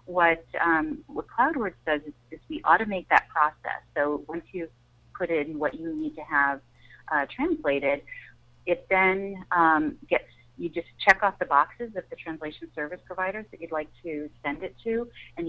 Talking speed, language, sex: 180 wpm, English, female